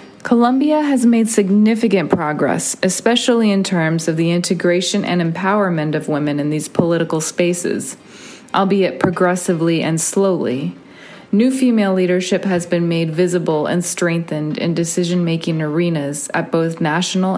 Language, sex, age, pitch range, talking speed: English, female, 30-49, 160-195 Hz, 130 wpm